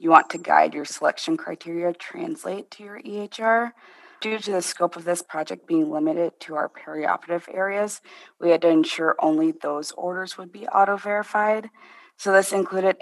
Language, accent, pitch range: English, American, 160-205 Hz